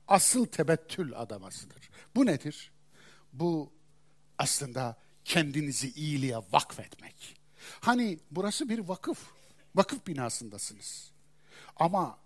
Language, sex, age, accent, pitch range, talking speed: Turkish, male, 60-79, native, 135-185 Hz, 85 wpm